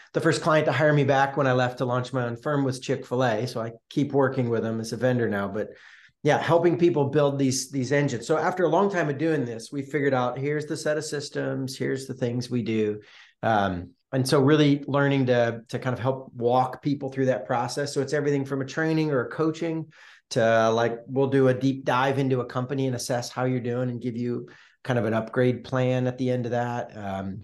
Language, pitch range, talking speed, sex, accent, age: English, 120-145 Hz, 240 wpm, male, American, 40-59